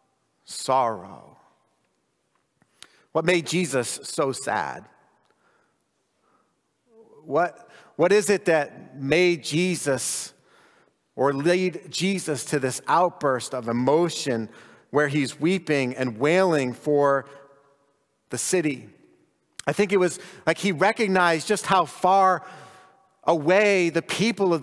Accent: American